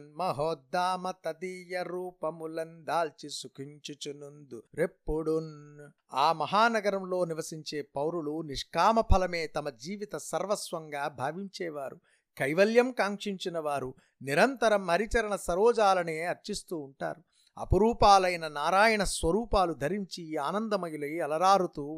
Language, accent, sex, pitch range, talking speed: Telugu, native, male, 155-190 Hz, 70 wpm